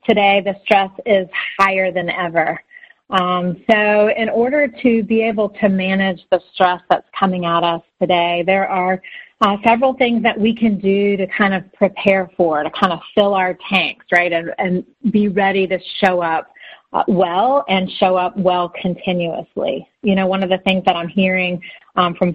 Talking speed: 185 wpm